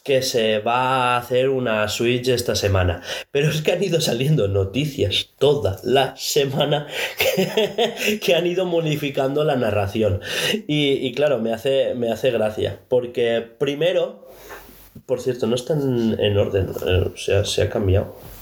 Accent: Spanish